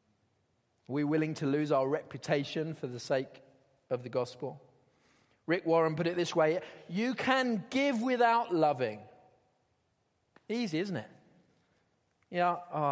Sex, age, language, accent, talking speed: male, 30-49, English, British, 130 wpm